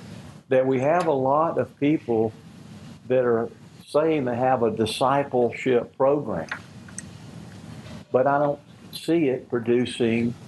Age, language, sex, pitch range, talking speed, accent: 60-79, English, male, 110-135 Hz, 120 wpm, American